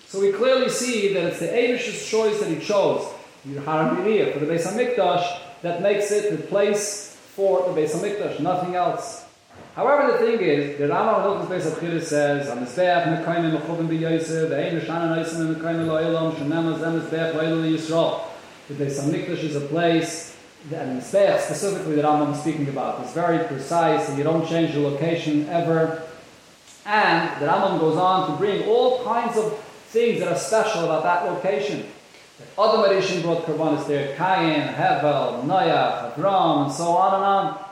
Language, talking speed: English, 160 wpm